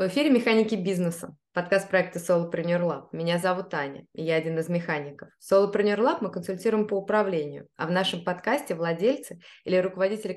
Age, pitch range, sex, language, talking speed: 20-39, 170-200 Hz, female, Russian, 175 wpm